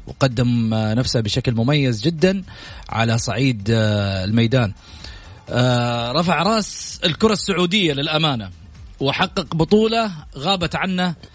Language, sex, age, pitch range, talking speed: Arabic, male, 30-49, 120-185 Hz, 90 wpm